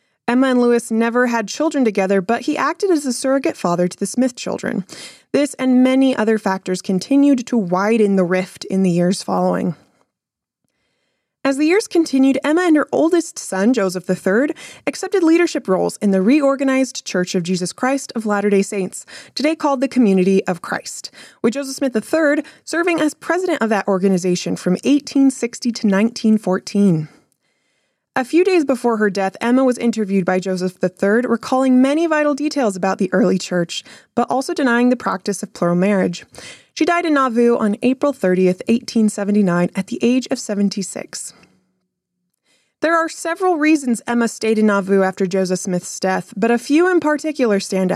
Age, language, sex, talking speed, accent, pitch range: 20-39, English, female, 170 wpm, American, 190-275 Hz